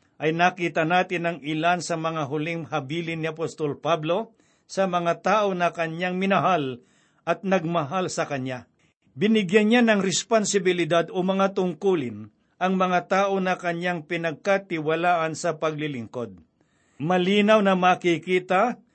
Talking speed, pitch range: 125 wpm, 165-195 Hz